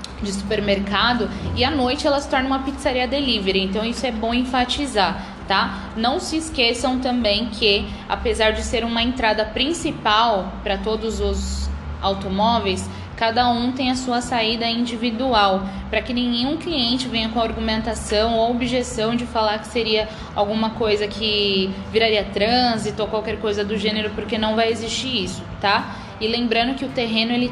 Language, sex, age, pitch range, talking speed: Portuguese, female, 10-29, 210-245 Hz, 160 wpm